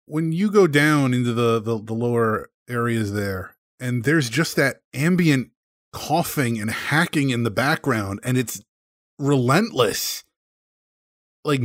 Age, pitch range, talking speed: 30-49, 120-160 Hz, 135 wpm